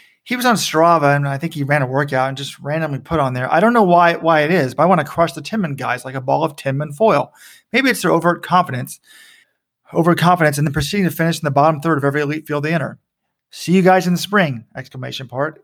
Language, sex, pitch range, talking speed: English, male, 145-185 Hz, 260 wpm